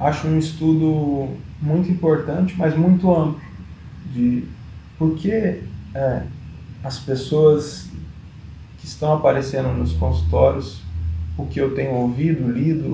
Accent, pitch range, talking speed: Brazilian, 120-155 Hz, 115 wpm